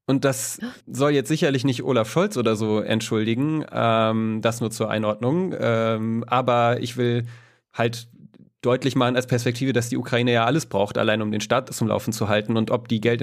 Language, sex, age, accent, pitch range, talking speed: German, male, 30-49, German, 105-120 Hz, 195 wpm